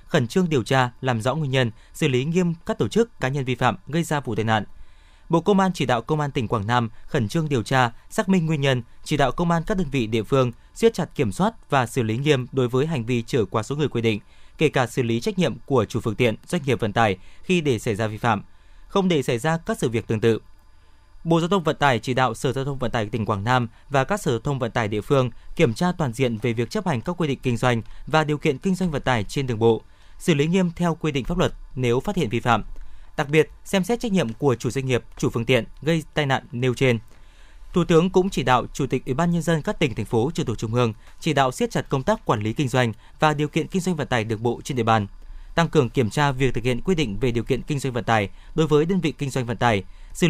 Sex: male